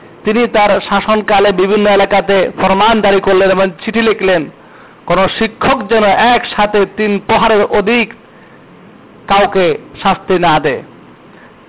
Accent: native